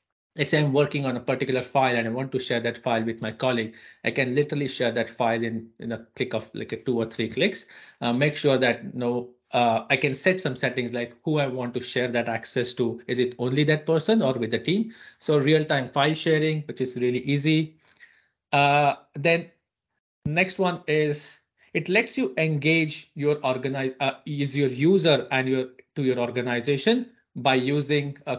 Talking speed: 205 wpm